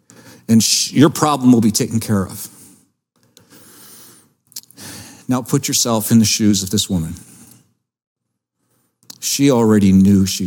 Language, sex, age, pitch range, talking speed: English, male, 50-69, 105-135 Hz, 120 wpm